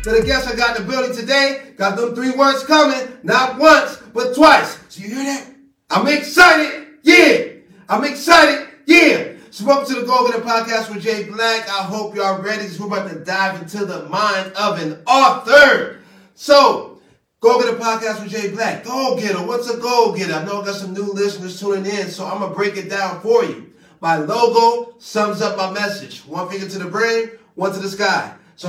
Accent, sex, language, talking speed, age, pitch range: American, male, English, 210 wpm, 30-49, 195-235 Hz